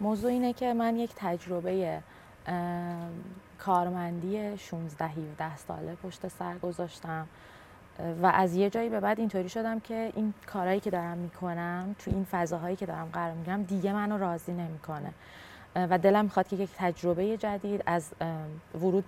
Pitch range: 165-200 Hz